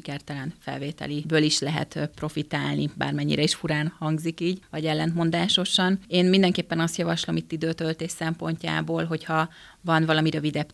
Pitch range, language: 155-170 Hz, Hungarian